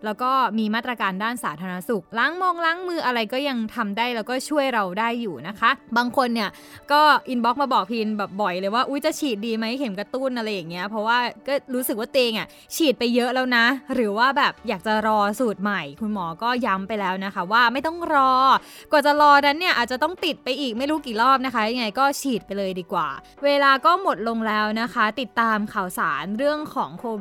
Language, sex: Thai, female